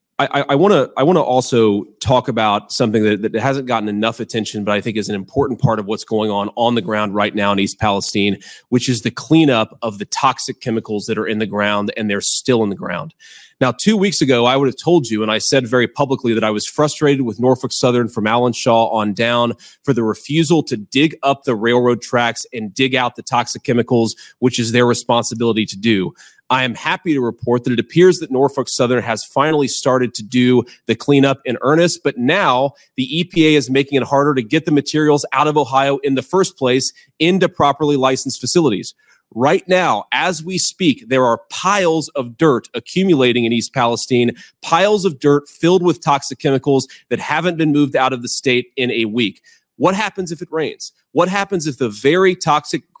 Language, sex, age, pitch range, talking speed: English, male, 30-49, 115-150 Hz, 210 wpm